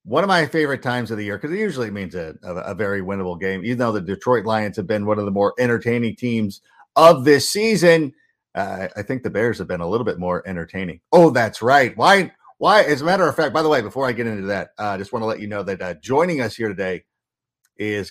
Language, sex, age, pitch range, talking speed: English, male, 50-69, 100-125 Hz, 260 wpm